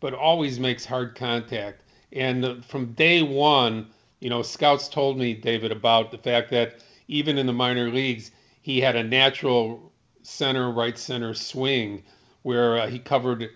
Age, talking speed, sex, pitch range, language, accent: 40-59, 160 wpm, male, 115-140 Hz, English, American